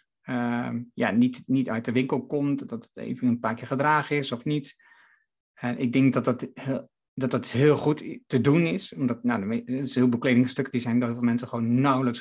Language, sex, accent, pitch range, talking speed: Dutch, male, Dutch, 120-145 Hz, 220 wpm